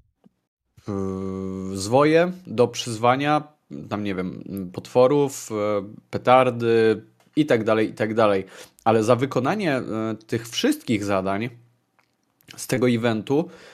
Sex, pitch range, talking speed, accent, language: male, 105-130 Hz, 100 wpm, native, Polish